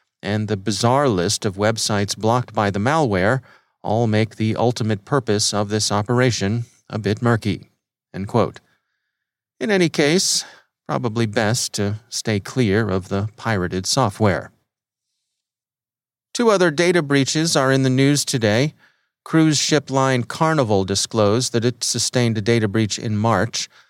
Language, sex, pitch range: English, male, 105-130 Hz